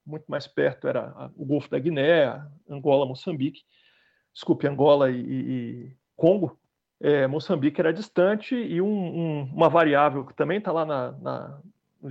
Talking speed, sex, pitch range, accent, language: 130 wpm, male, 145-210 Hz, Brazilian, Portuguese